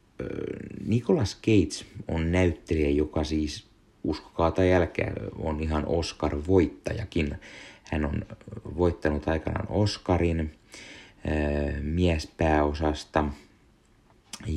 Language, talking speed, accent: Finnish, 70 wpm, native